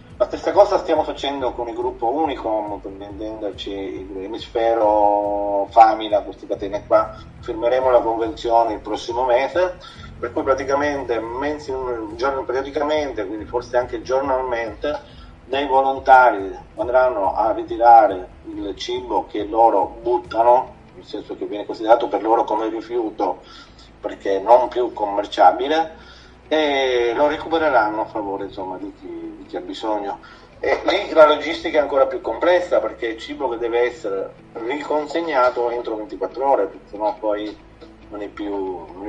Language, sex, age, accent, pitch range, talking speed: Italian, male, 30-49, native, 110-165 Hz, 135 wpm